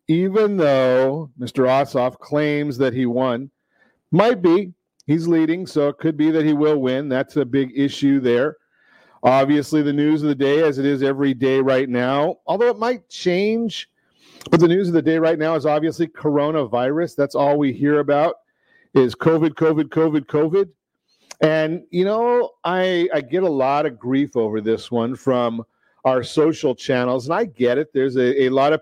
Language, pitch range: English, 135-165 Hz